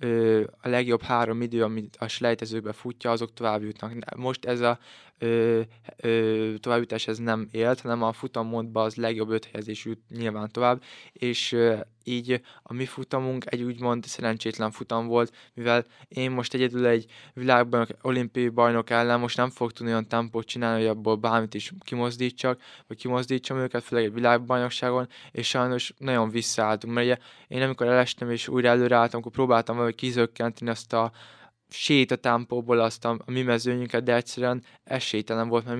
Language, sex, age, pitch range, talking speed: Hungarian, male, 20-39, 110-125 Hz, 160 wpm